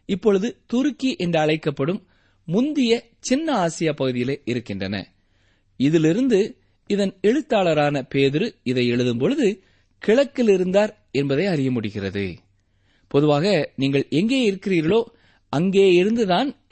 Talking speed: 95 wpm